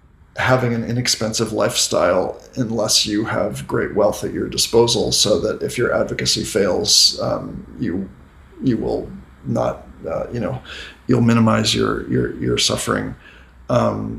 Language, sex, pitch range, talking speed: English, male, 75-120 Hz, 140 wpm